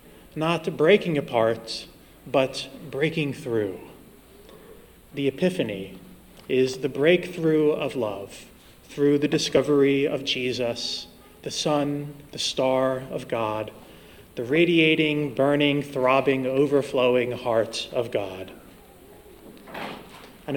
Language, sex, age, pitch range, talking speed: English, male, 30-49, 125-155 Hz, 95 wpm